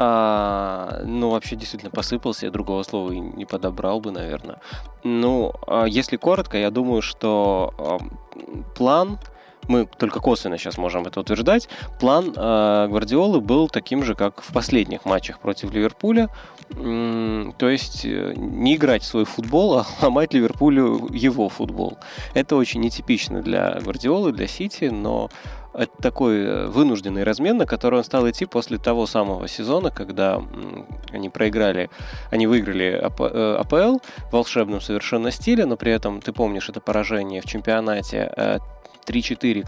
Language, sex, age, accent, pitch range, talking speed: Russian, male, 20-39, native, 100-120 Hz, 135 wpm